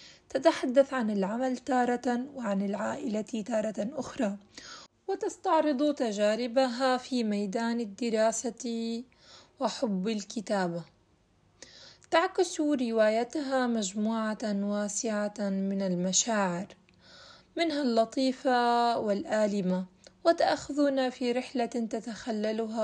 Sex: female